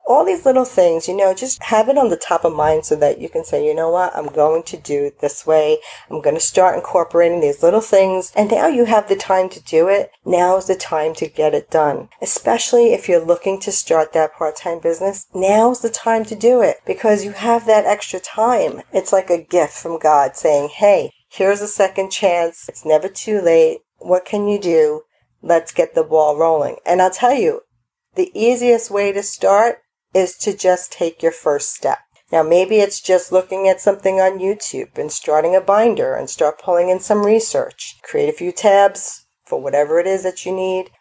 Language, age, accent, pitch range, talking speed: English, 50-69, American, 175-220 Hz, 215 wpm